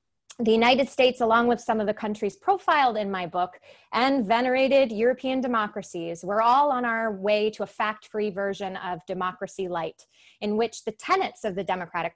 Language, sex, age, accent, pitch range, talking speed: English, female, 20-39, American, 190-240 Hz, 185 wpm